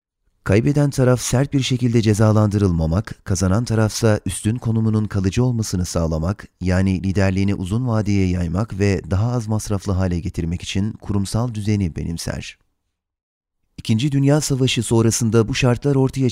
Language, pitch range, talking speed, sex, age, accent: Turkish, 95-115 Hz, 130 wpm, male, 30-49, native